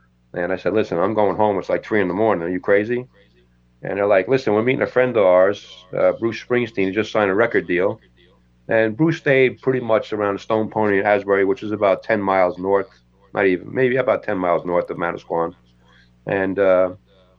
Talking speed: 210 wpm